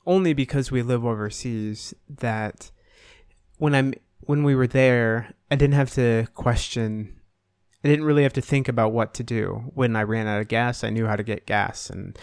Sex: male